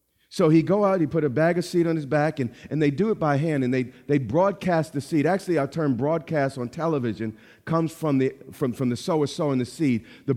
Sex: male